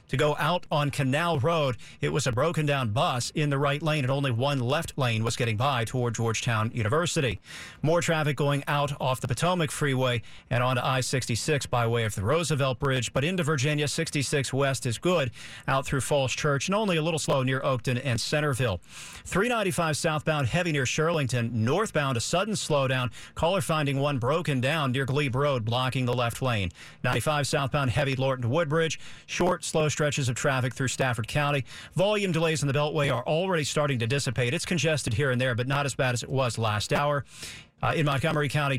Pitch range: 125-150 Hz